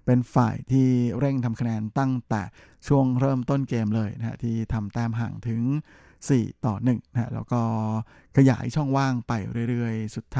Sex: male